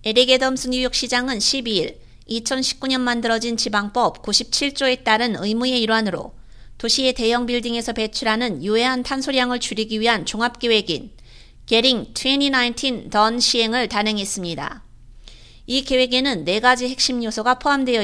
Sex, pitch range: female, 215-255 Hz